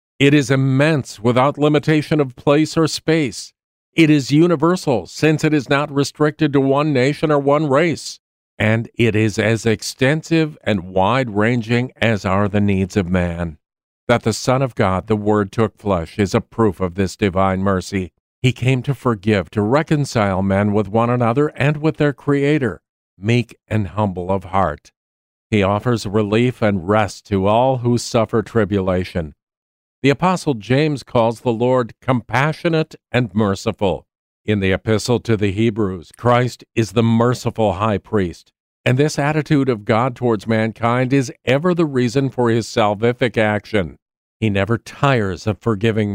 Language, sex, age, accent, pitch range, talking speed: English, male, 50-69, American, 105-140 Hz, 160 wpm